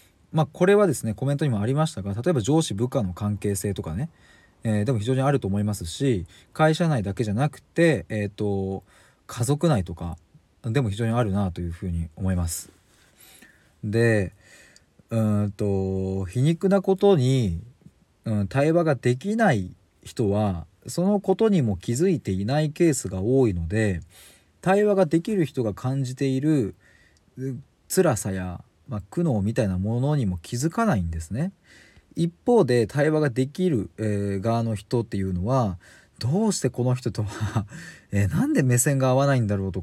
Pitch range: 95-150 Hz